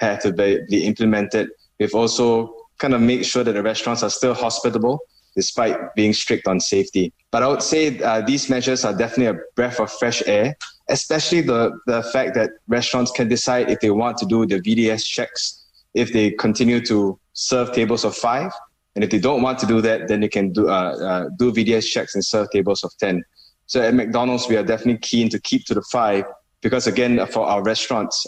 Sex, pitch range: male, 100-120 Hz